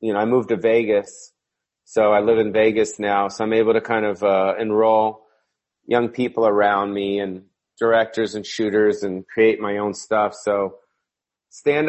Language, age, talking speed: English, 30-49, 175 wpm